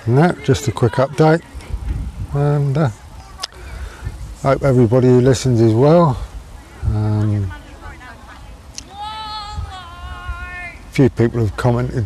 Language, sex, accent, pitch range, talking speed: English, male, British, 100-135 Hz, 95 wpm